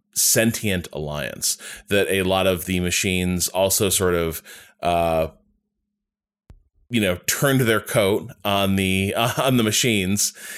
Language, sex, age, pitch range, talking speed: English, male, 20-39, 90-125 Hz, 130 wpm